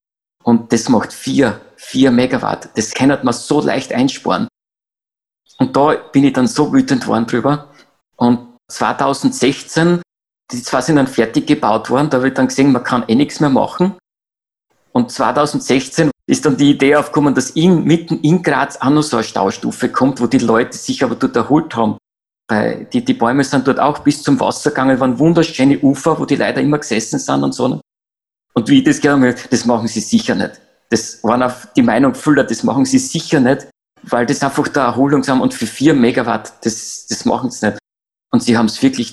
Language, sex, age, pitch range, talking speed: German, male, 50-69, 120-155 Hz, 200 wpm